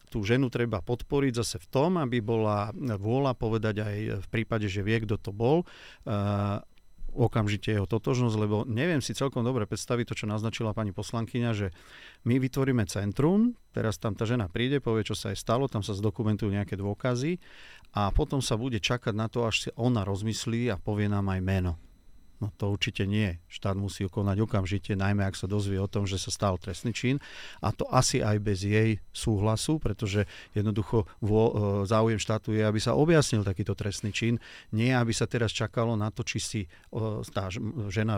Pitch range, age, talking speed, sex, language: 100-120 Hz, 40-59, 185 wpm, male, Slovak